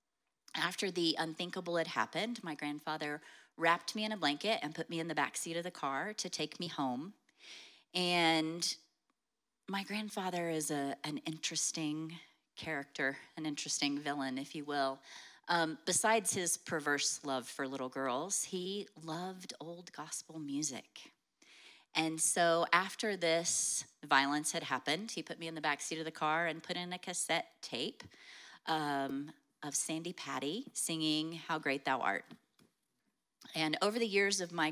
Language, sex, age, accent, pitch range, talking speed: English, female, 30-49, American, 150-180 Hz, 155 wpm